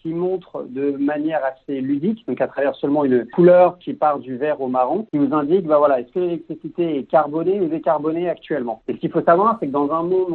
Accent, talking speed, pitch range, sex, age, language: French, 240 wpm, 140-165 Hz, male, 50-69, French